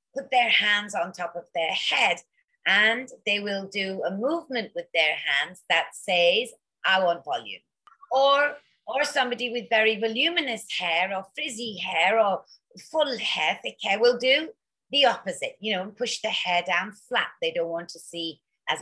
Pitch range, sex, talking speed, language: 175-255 Hz, female, 170 wpm, English